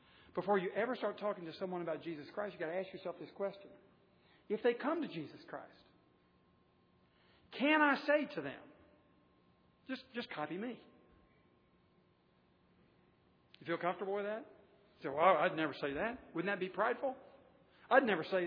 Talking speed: 165 wpm